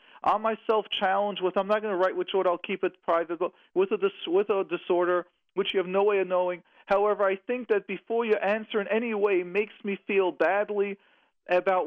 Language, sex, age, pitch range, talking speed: English, male, 40-59, 180-225 Hz, 215 wpm